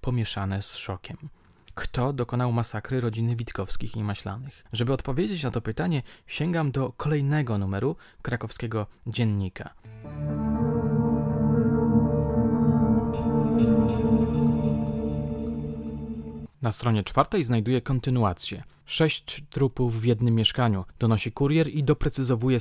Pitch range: 105-130 Hz